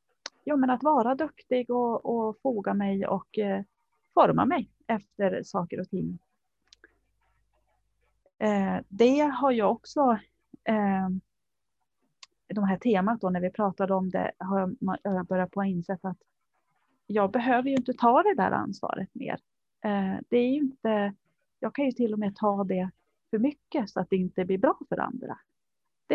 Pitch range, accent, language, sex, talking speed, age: 185-240 Hz, native, Swedish, female, 165 wpm, 30-49